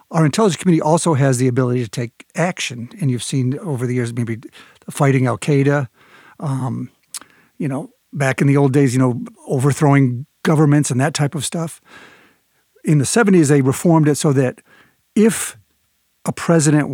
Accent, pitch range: American, 125-150 Hz